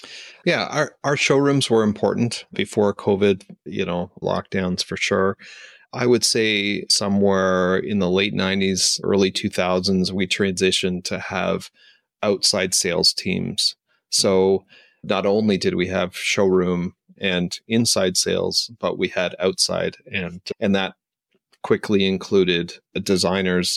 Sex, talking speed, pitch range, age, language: male, 125 wpm, 90-100 Hz, 30-49, English